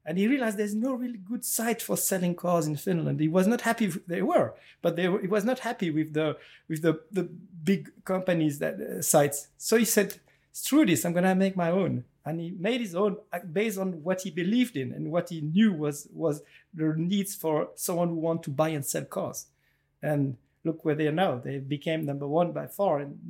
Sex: male